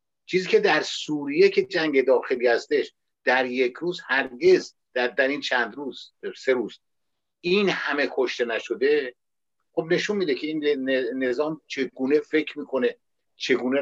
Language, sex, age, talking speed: Persian, male, 60-79, 145 wpm